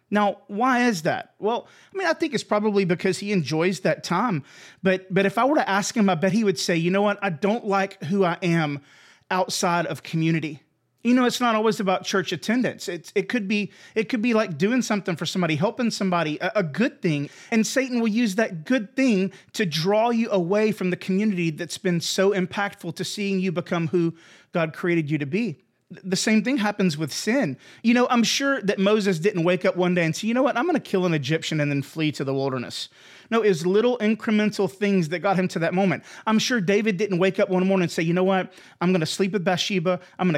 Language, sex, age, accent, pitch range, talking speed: English, male, 30-49, American, 170-210 Hz, 240 wpm